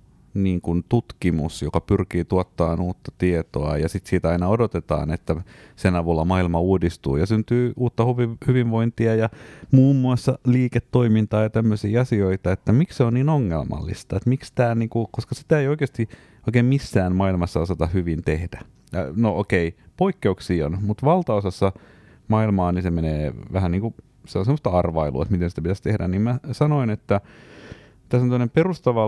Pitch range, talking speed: 90-115 Hz, 165 wpm